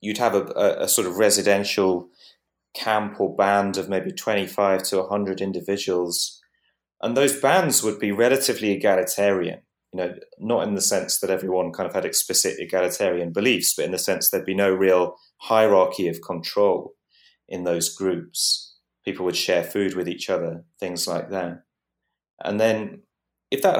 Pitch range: 90-105 Hz